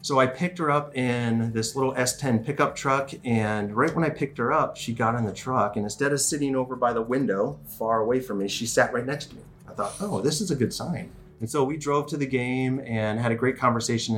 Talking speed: 260 wpm